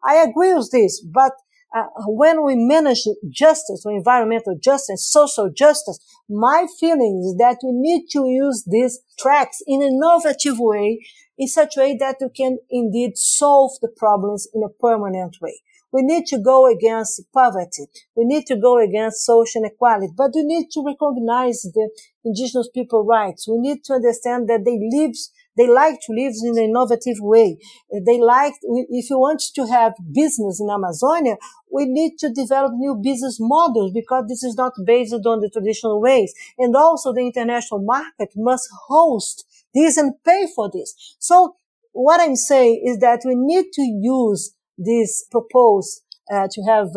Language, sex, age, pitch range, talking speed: English, female, 50-69, 210-275 Hz, 170 wpm